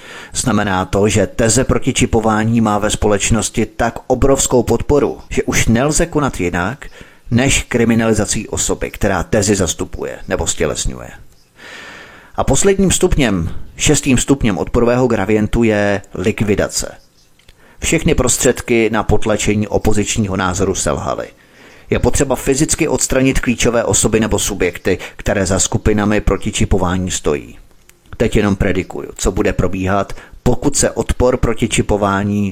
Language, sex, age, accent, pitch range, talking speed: Czech, male, 30-49, native, 100-120 Hz, 120 wpm